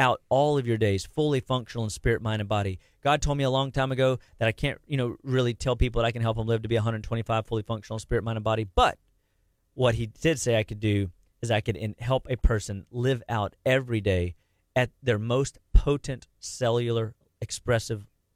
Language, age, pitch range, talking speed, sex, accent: English, 40-59, 105-130 Hz, 220 wpm, male, American